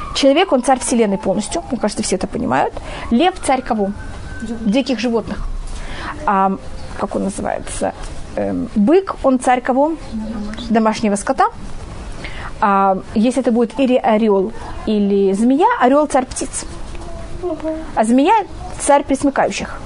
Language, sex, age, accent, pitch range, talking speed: Russian, female, 20-39, native, 220-275 Hz, 110 wpm